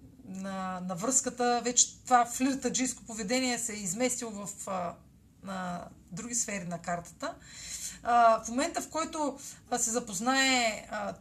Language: Bulgarian